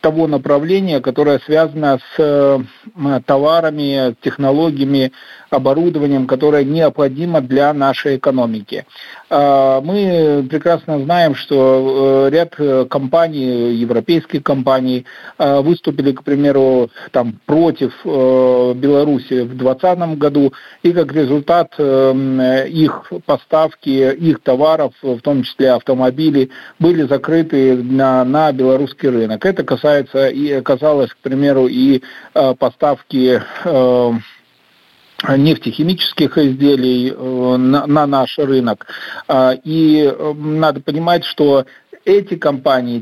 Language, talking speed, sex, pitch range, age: Russian, 100 wpm, male, 130-155 Hz, 50-69